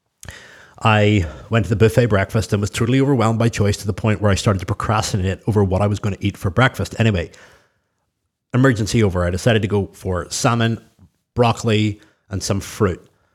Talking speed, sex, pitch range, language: 190 wpm, male, 100-115 Hz, English